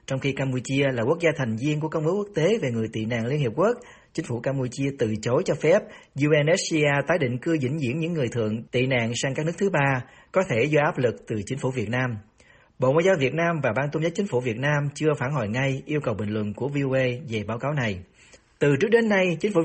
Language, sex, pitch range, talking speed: Vietnamese, male, 125-160 Hz, 265 wpm